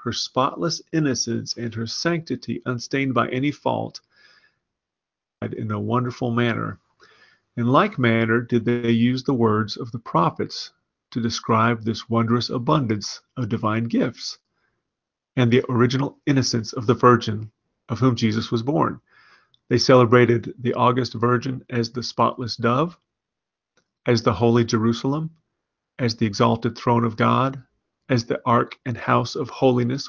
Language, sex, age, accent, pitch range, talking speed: English, male, 40-59, American, 115-130 Hz, 140 wpm